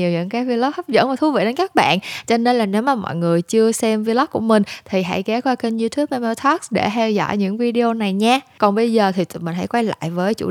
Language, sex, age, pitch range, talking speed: Vietnamese, female, 10-29, 185-235 Hz, 280 wpm